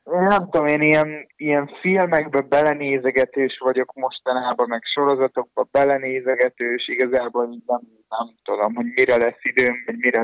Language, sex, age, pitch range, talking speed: Hungarian, male, 20-39, 125-150 Hz, 130 wpm